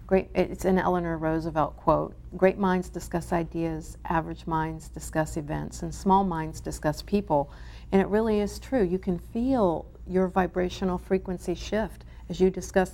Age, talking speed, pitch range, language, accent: 50-69, 160 wpm, 165-190 Hz, English, American